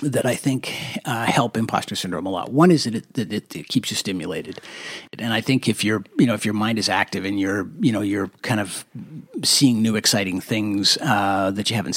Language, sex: English, male